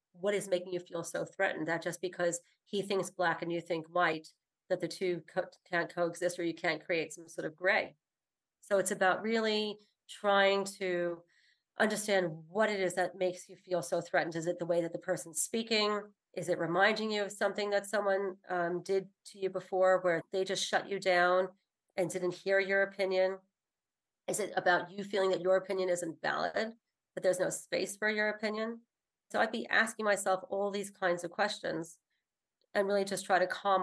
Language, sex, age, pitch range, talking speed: English, female, 40-59, 175-195 Hz, 195 wpm